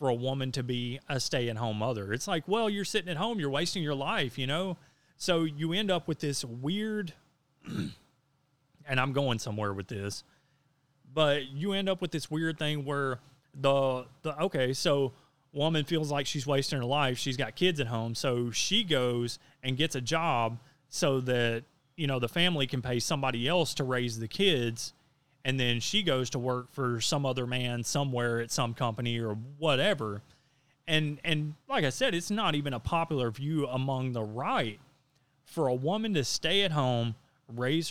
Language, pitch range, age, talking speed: English, 125-155 Hz, 30-49, 185 wpm